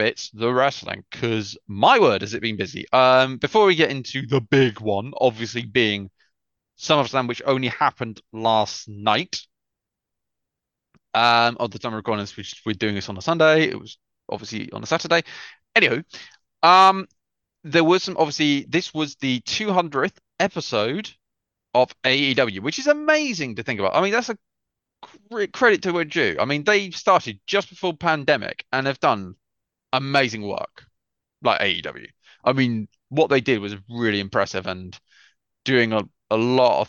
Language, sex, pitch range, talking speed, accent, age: English, male, 105-145 Hz, 165 wpm, British, 30-49